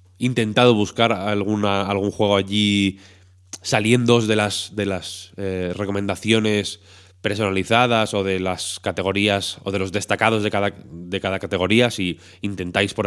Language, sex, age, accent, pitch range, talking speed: Spanish, male, 20-39, Spanish, 90-105 Hz, 140 wpm